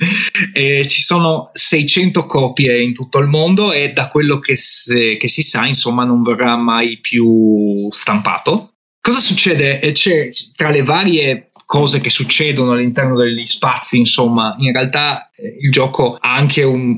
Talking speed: 160 wpm